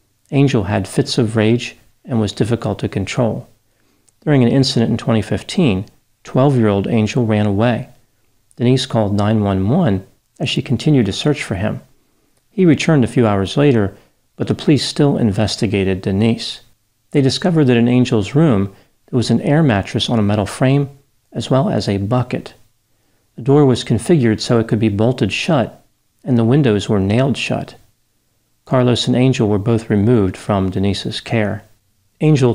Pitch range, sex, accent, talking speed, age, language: 105-130 Hz, male, American, 160 wpm, 40-59, English